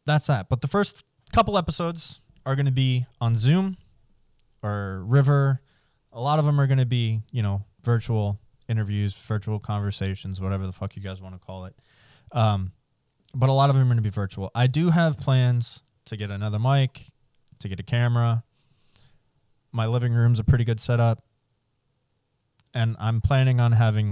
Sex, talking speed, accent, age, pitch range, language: male, 180 wpm, American, 20-39, 105-130 Hz, English